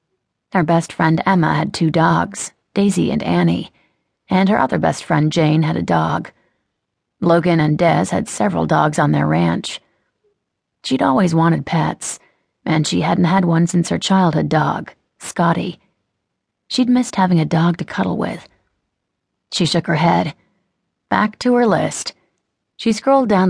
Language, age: English, 30-49